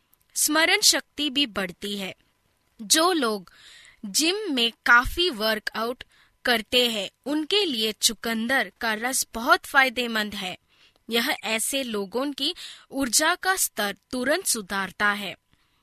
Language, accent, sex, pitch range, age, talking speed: Hindi, native, female, 215-310 Hz, 20-39, 120 wpm